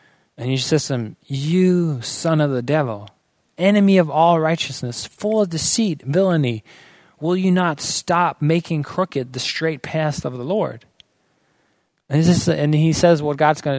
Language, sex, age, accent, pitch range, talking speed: English, male, 20-39, American, 135-170 Hz, 155 wpm